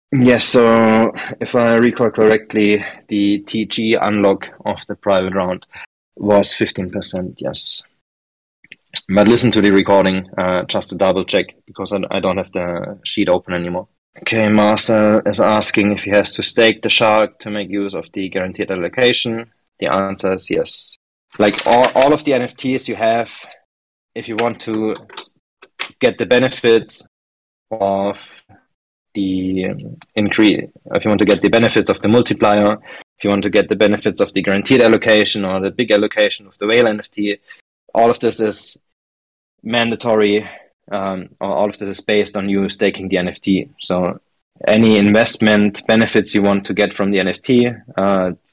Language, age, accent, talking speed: English, 20-39, German, 165 wpm